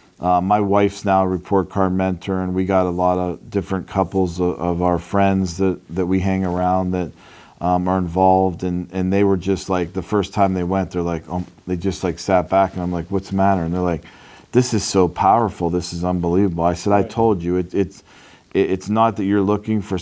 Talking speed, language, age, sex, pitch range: 225 wpm, English, 40-59, male, 90-100 Hz